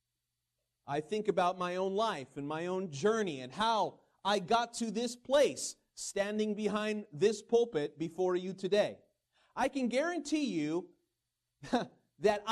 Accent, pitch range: American, 165-245 Hz